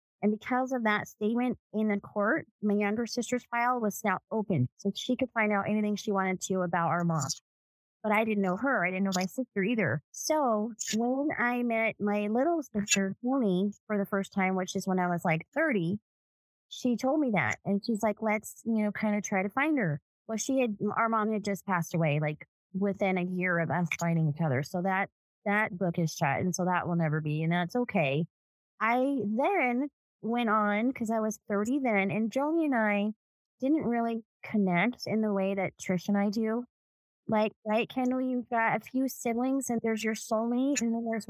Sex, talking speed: female, 210 wpm